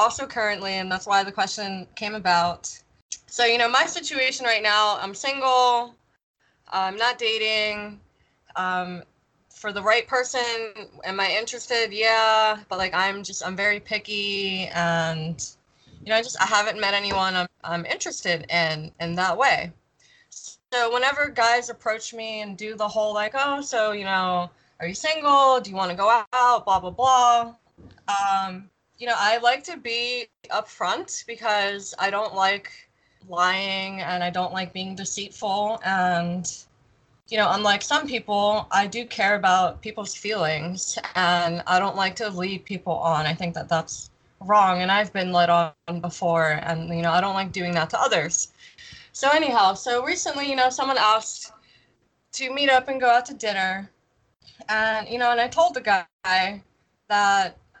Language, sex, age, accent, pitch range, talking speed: English, female, 20-39, American, 180-235 Hz, 170 wpm